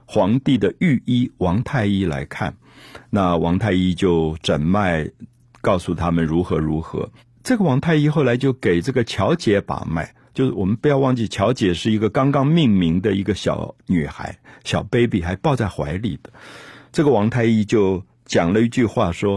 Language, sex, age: Chinese, male, 50-69